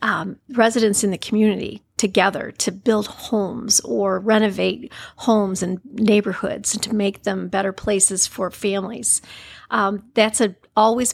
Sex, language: female, English